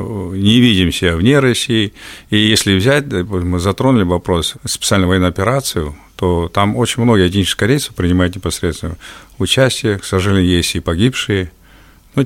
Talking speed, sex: 140 wpm, male